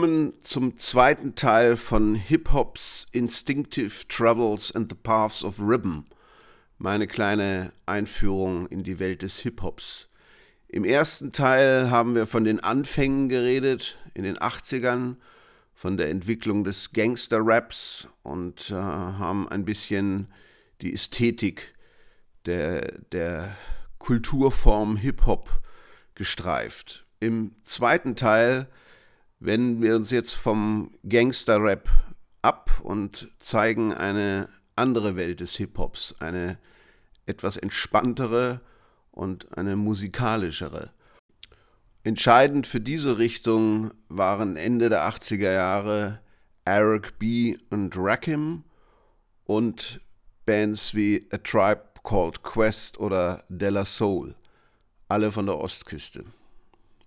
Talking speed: 105 wpm